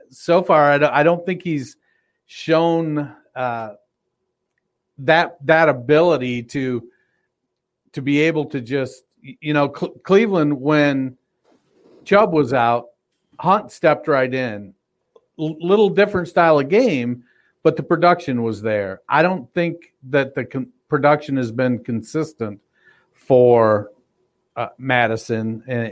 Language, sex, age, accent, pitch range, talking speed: English, male, 50-69, American, 120-150 Hz, 125 wpm